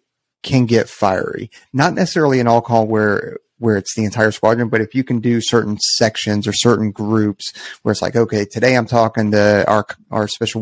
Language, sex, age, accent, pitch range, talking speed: English, male, 30-49, American, 110-130 Hz, 200 wpm